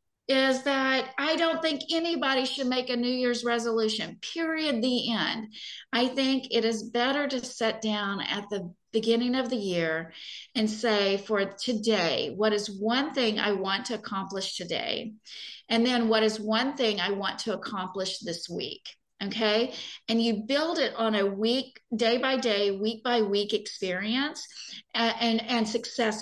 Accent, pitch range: American, 205-250 Hz